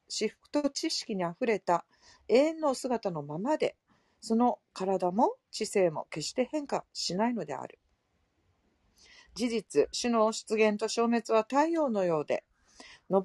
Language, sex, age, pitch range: Japanese, female, 40-59, 195-270 Hz